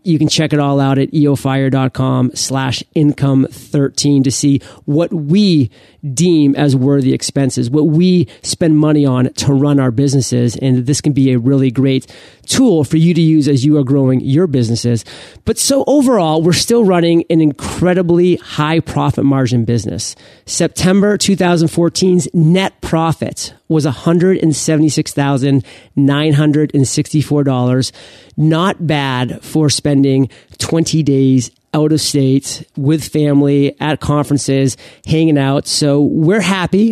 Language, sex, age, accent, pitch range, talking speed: English, male, 30-49, American, 135-165 Hz, 135 wpm